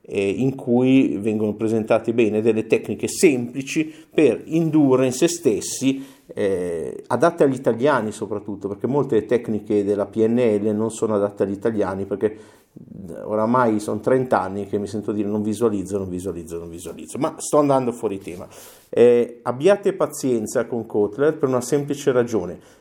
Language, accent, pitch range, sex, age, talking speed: Italian, native, 110-155 Hz, male, 50-69, 150 wpm